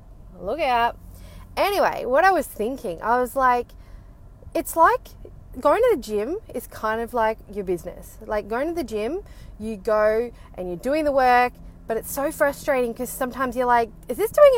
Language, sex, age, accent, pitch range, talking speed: English, female, 20-39, Australian, 205-265 Hz, 185 wpm